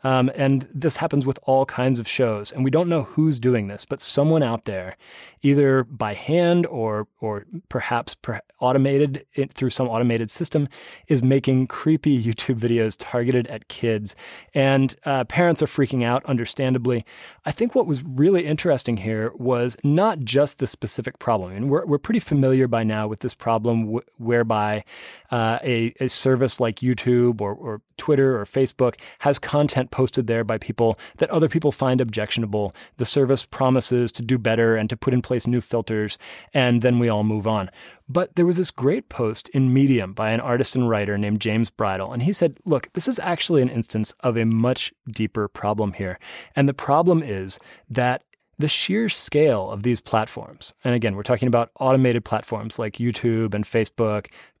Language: English